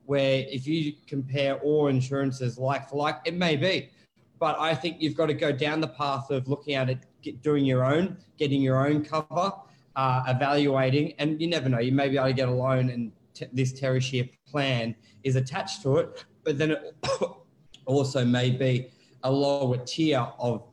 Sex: male